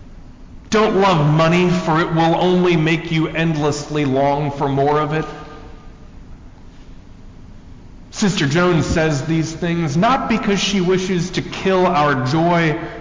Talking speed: 130 wpm